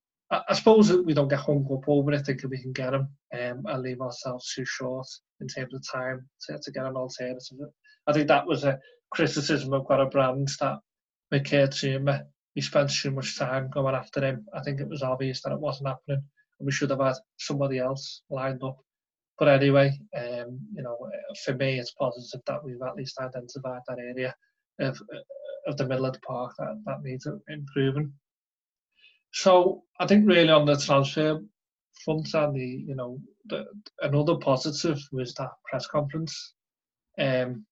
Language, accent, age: English, British, 20-39